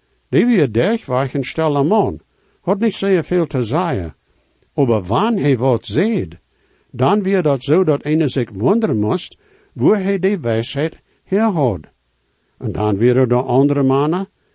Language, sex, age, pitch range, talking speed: English, male, 60-79, 115-160 Hz, 155 wpm